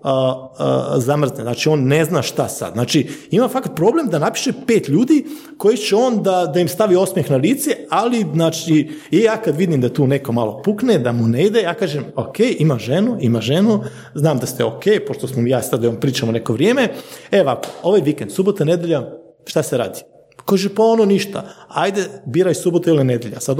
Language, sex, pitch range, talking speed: Croatian, male, 130-195 Hz, 205 wpm